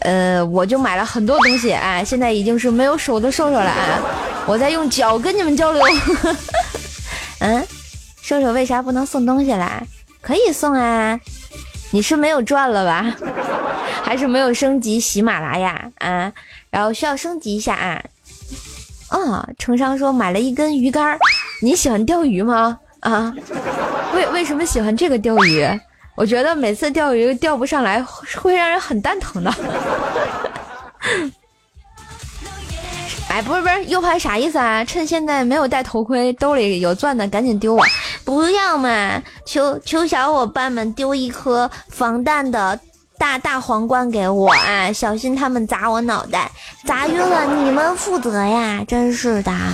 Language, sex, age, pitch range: Chinese, female, 20-39, 215-285 Hz